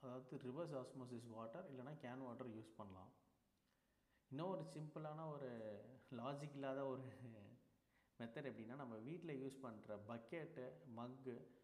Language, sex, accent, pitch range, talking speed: Tamil, male, native, 115-140 Hz, 120 wpm